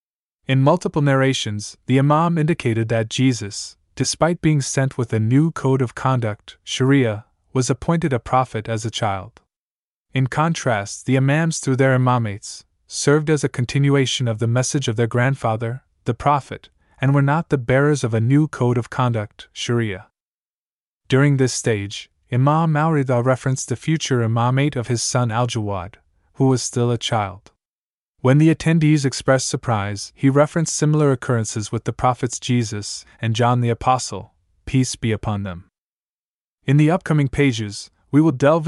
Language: Arabic